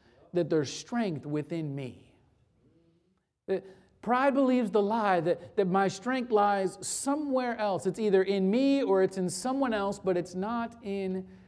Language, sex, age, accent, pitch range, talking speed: English, male, 40-59, American, 160-220 Hz, 150 wpm